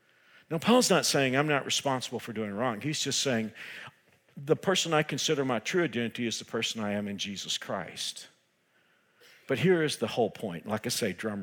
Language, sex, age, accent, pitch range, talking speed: English, male, 50-69, American, 115-155 Hz, 205 wpm